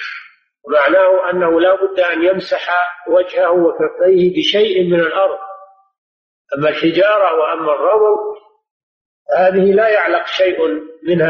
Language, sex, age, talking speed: Arabic, male, 50-69, 105 wpm